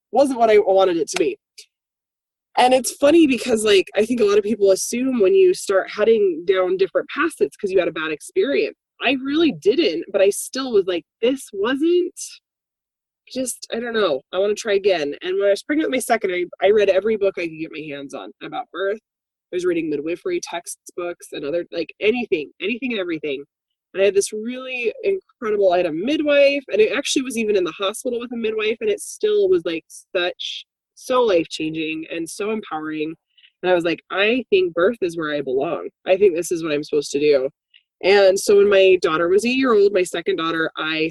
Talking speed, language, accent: 215 wpm, English, American